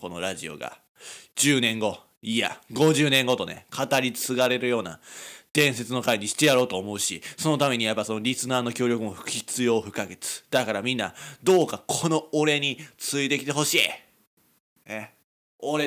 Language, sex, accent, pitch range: Japanese, male, native, 125-205 Hz